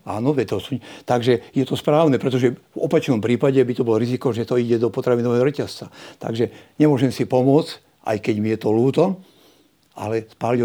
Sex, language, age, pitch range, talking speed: male, Slovak, 60-79, 120-145 Hz, 185 wpm